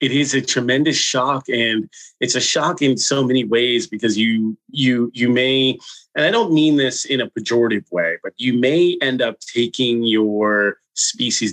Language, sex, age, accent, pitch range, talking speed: English, male, 30-49, American, 105-130 Hz, 180 wpm